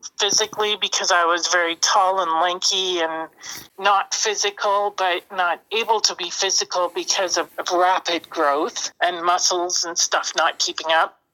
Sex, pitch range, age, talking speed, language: male, 170-200 Hz, 40-59, 150 wpm, English